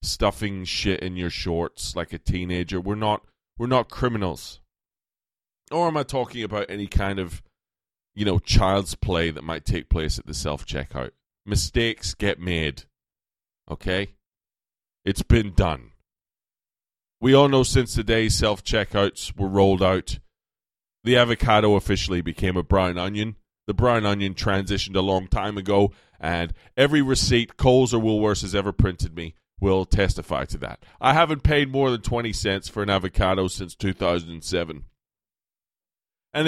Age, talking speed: 30-49, 150 wpm